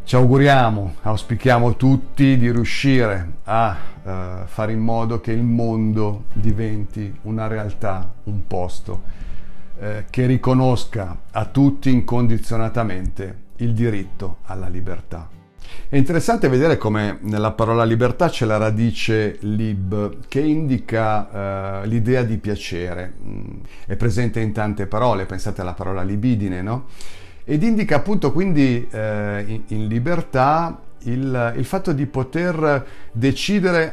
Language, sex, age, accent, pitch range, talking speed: Italian, male, 50-69, native, 100-130 Hz, 120 wpm